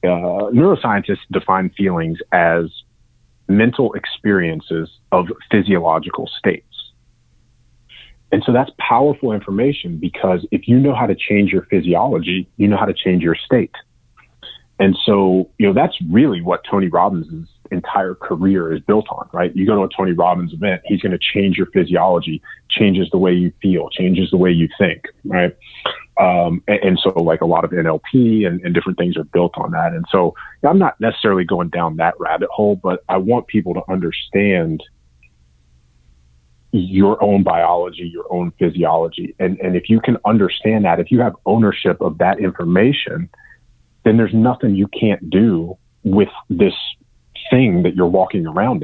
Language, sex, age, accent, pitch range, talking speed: English, male, 30-49, American, 85-105 Hz, 170 wpm